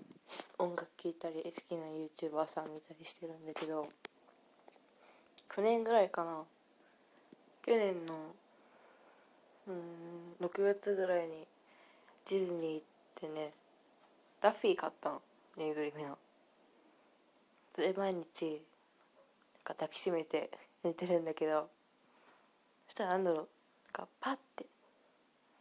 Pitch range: 155-195 Hz